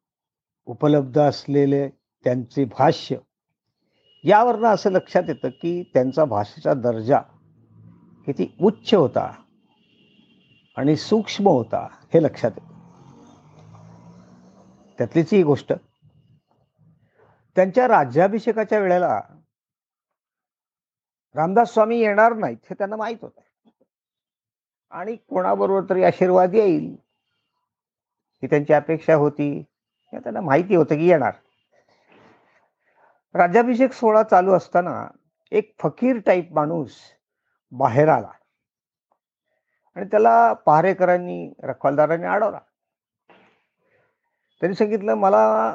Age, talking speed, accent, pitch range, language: 50-69, 90 wpm, native, 145-215 Hz, Marathi